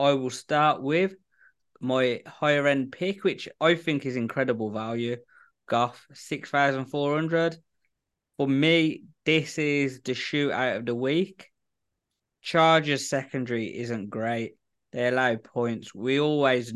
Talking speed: 135 wpm